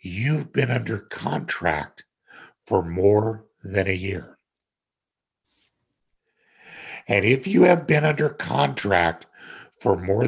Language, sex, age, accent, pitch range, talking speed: English, male, 60-79, American, 100-130 Hz, 105 wpm